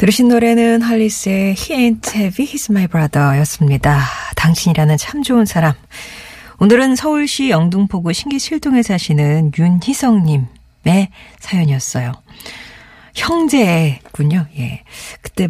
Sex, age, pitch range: female, 40-59, 150-225 Hz